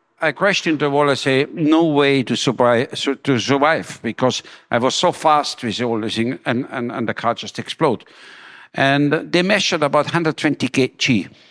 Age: 60-79